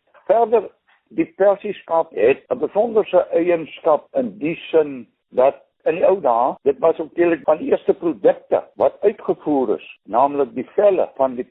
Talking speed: 160 wpm